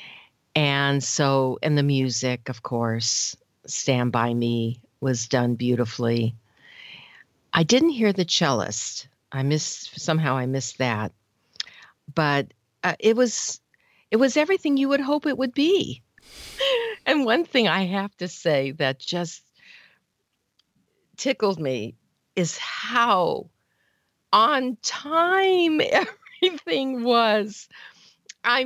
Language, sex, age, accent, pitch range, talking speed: English, female, 50-69, American, 125-185 Hz, 115 wpm